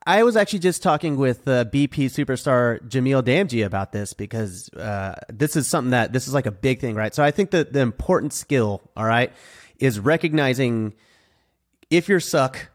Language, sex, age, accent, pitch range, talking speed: English, male, 30-49, American, 115-150 Hz, 190 wpm